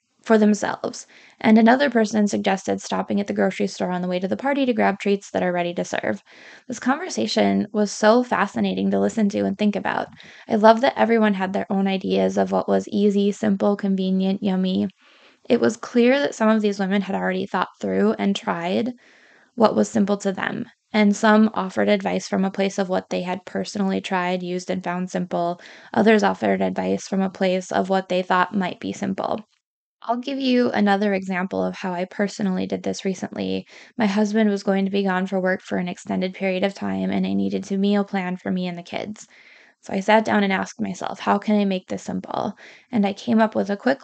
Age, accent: 20-39, American